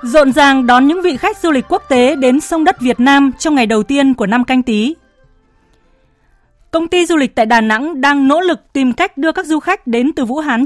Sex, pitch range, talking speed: female, 235-305 Hz, 240 wpm